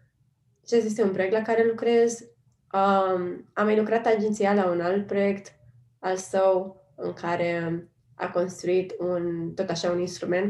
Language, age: Romanian, 20-39